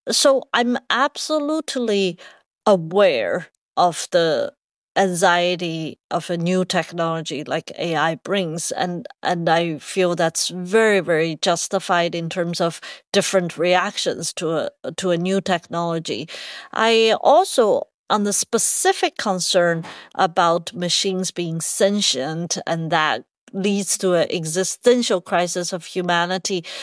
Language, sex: English, female